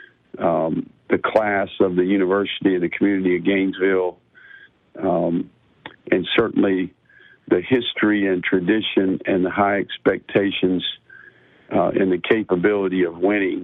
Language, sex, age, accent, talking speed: English, male, 60-79, American, 125 wpm